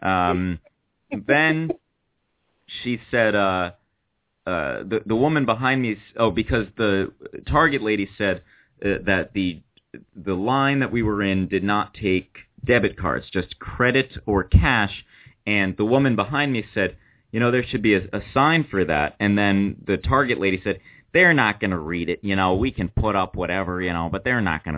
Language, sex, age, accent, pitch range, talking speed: English, male, 30-49, American, 90-110 Hz, 185 wpm